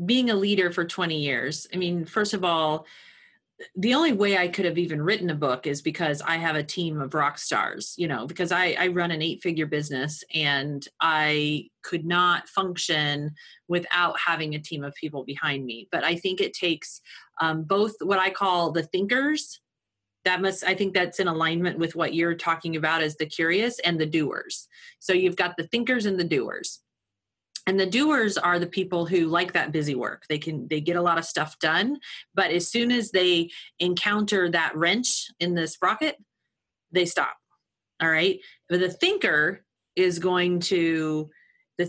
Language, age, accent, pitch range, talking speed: English, 30-49, American, 155-190 Hz, 190 wpm